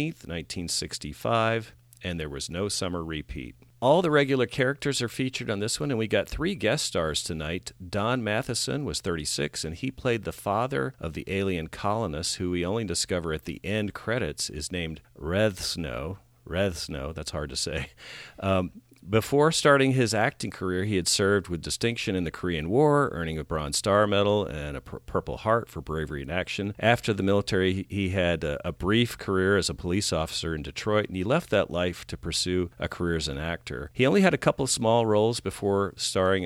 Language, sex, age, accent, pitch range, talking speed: English, male, 50-69, American, 80-105 Hz, 195 wpm